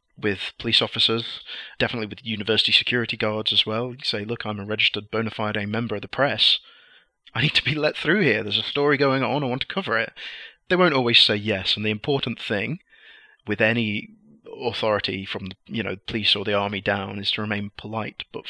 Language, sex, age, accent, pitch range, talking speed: English, male, 30-49, British, 105-120 Hz, 210 wpm